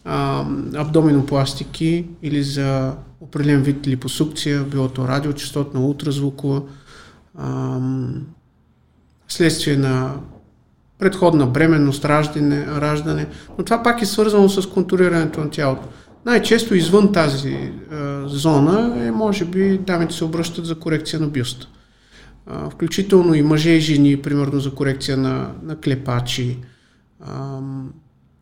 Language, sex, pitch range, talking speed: Bulgarian, male, 140-165 Hz, 110 wpm